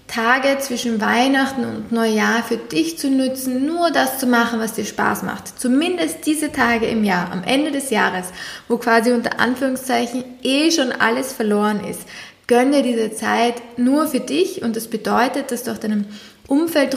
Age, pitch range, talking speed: 20-39, 220-255 Hz, 175 wpm